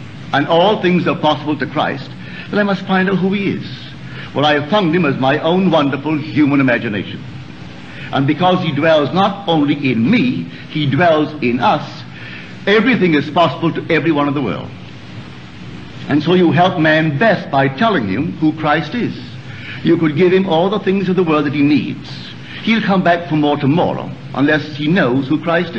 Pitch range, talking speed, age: 135-180 Hz, 190 wpm, 60-79